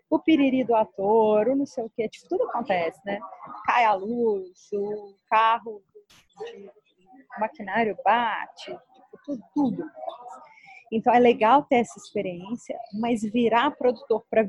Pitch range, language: 220-260 Hz, Portuguese